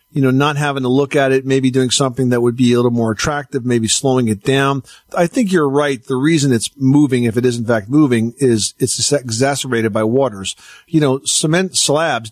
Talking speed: 225 wpm